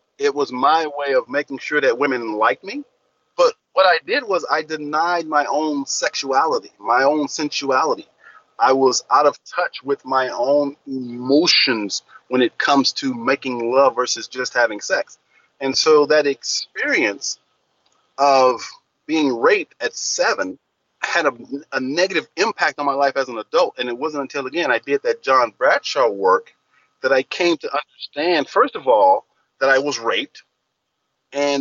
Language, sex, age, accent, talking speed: English, male, 40-59, American, 165 wpm